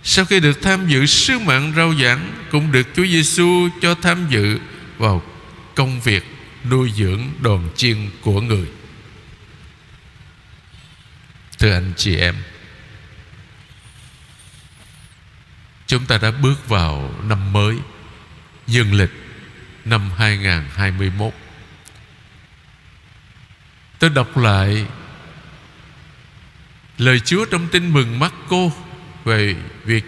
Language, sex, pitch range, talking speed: Vietnamese, male, 105-155 Hz, 105 wpm